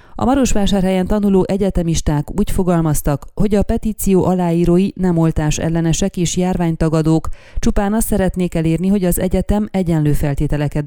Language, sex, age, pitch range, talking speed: Hungarian, female, 30-49, 160-190 Hz, 135 wpm